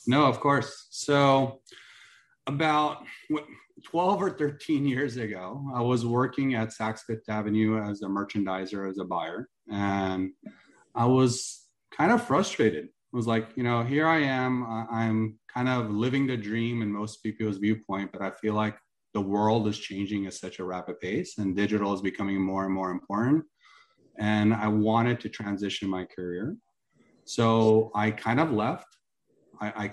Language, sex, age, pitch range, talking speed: English, male, 30-49, 100-120 Hz, 160 wpm